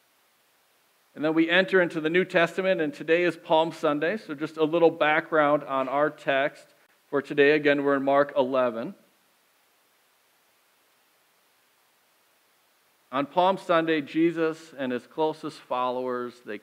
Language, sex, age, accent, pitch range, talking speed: English, male, 50-69, American, 130-165 Hz, 135 wpm